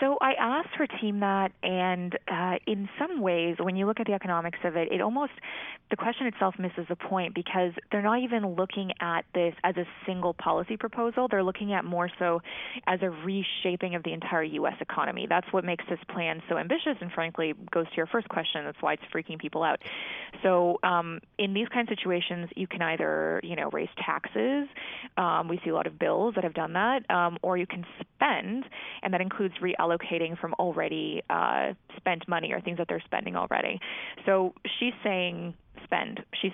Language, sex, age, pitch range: English, female, 20-39, 175-205 Hz